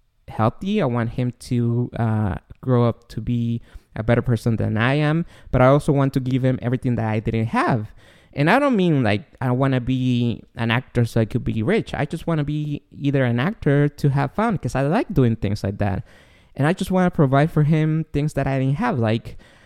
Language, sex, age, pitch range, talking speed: English, male, 20-39, 115-140 Hz, 230 wpm